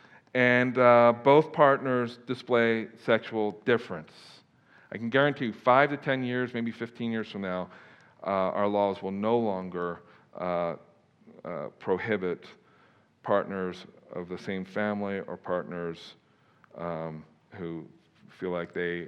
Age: 50-69